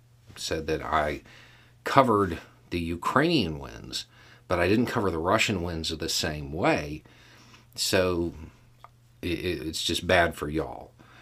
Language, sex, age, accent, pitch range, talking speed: English, male, 50-69, American, 85-120 Hz, 130 wpm